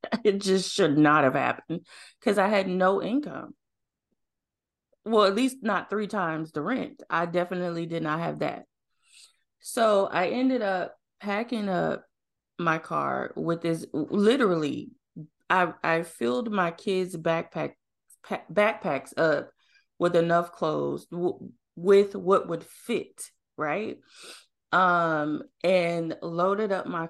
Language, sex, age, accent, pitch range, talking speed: English, female, 20-39, American, 160-195 Hz, 130 wpm